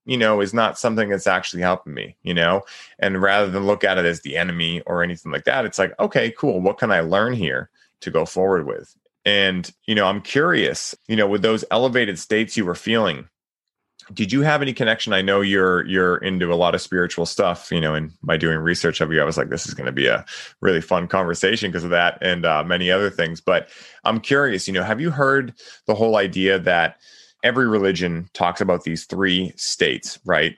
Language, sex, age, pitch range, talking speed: English, male, 30-49, 90-105 Hz, 225 wpm